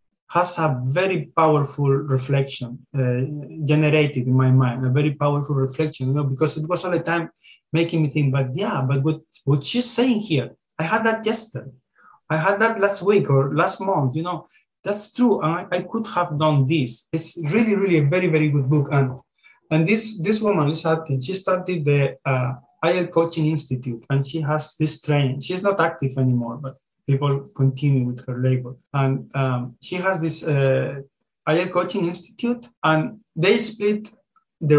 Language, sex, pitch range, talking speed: English, male, 135-180 Hz, 185 wpm